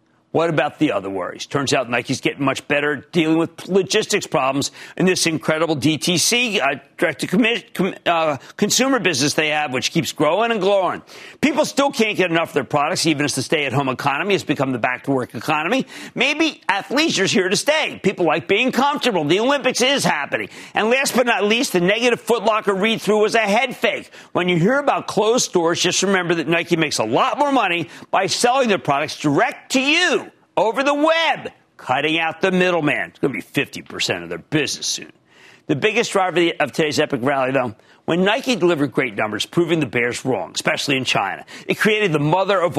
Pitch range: 150-225 Hz